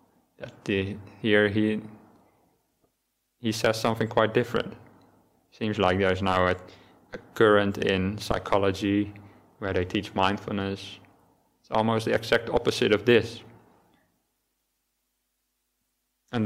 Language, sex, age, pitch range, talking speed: English, male, 20-39, 100-115 Hz, 110 wpm